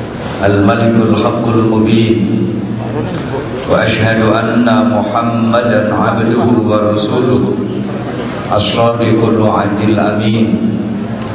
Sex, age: male, 40-59